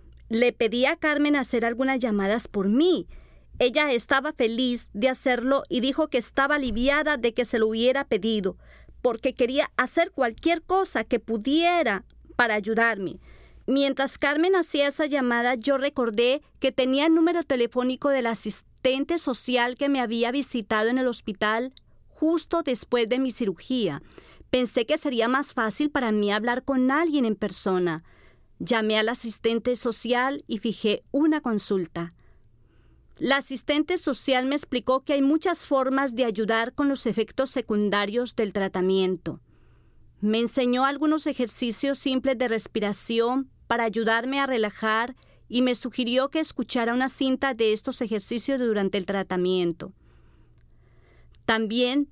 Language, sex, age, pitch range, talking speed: Spanish, female, 40-59, 225-275 Hz, 140 wpm